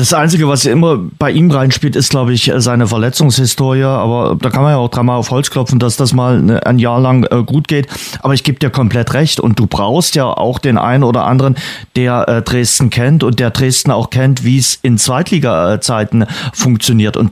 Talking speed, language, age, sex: 210 wpm, German, 40-59, male